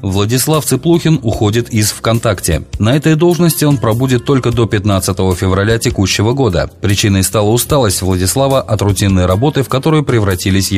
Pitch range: 95-125 Hz